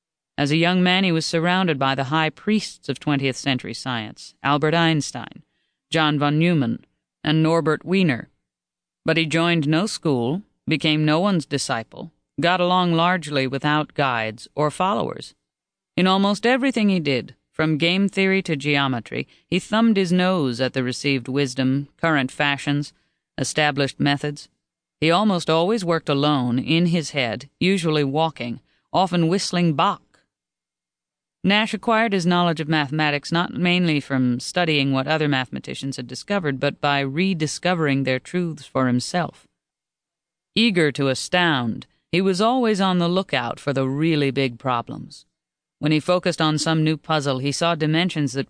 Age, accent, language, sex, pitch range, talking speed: 40-59, American, English, female, 140-180 Hz, 150 wpm